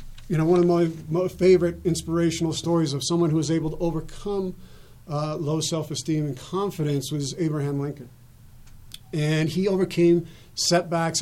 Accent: American